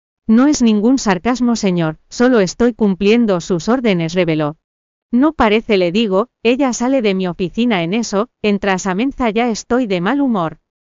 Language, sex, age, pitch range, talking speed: Spanish, female, 40-59, 185-235 Hz, 165 wpm